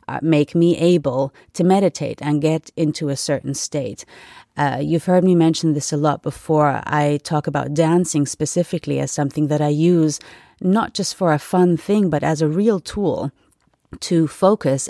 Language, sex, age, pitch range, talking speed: English, female, 30-49, 150-180 Hz, 175 wpm